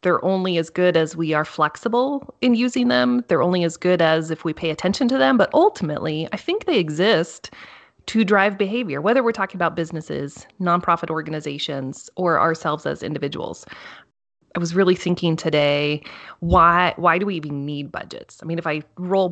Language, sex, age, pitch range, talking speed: English, female, 30-49, 160-195 Hz, 185 wpm